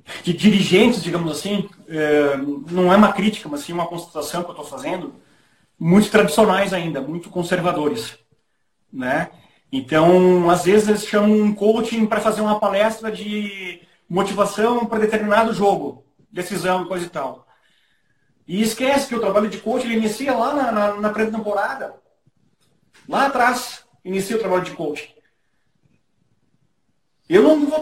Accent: Brazilian